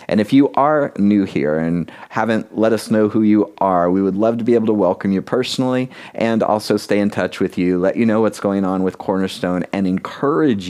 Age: 30-49